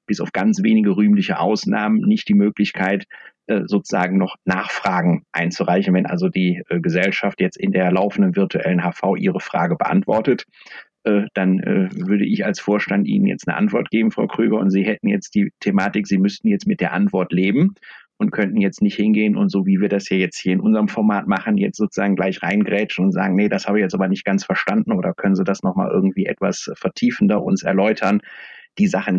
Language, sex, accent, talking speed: German, male, German, 195 wpm